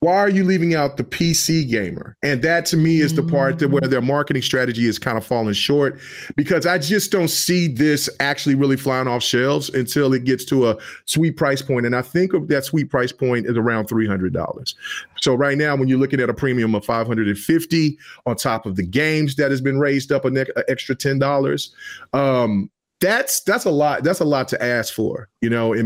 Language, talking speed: English, 230 wpm